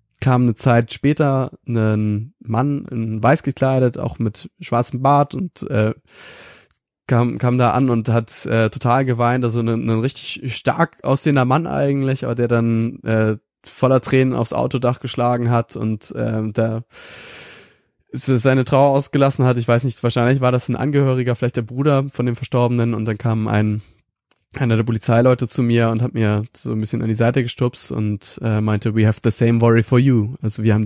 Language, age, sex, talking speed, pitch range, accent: German, 20-39, male, 185 wpm, 110-130 Hz, German